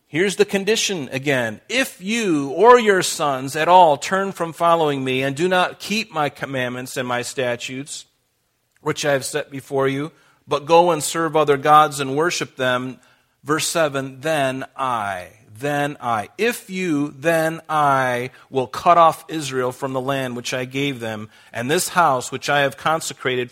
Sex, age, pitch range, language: male, 40-59, 125-160 Hz, English